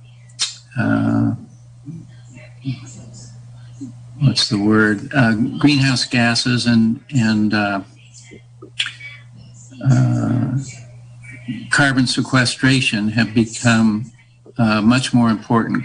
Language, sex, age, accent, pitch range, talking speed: English, male, 50-69, American, 115-125 Hz, 70 wpm